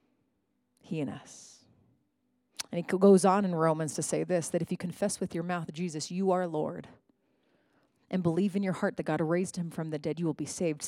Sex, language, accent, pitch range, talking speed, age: female, English, American, 150-180 Hz, 215 wpm, 30-49